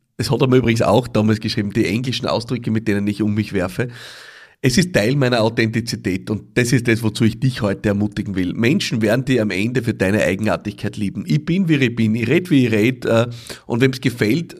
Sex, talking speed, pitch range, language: male, 230 wpm, 105-125 Hz, German